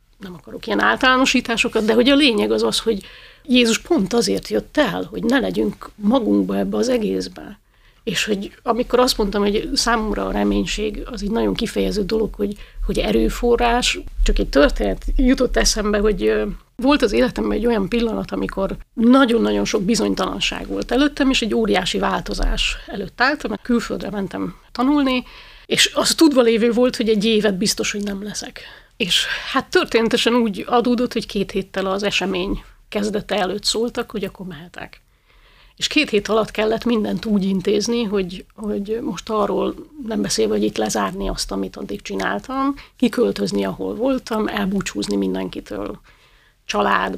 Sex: female